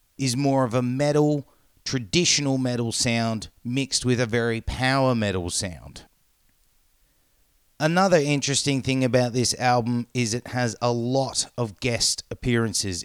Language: English